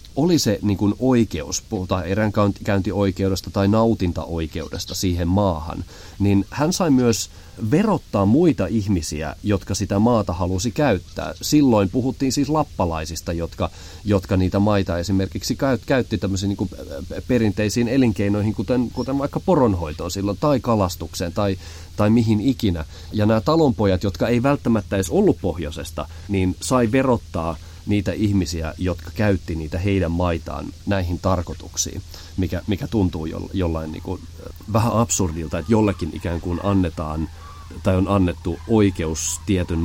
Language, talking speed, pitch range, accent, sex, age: Finnish, 135 wpm, 85-110 Hz, native, male, 30-49